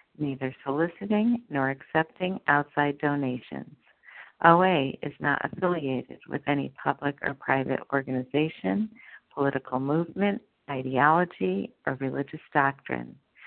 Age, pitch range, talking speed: 50-69, 135-175 Hz, 100 wpm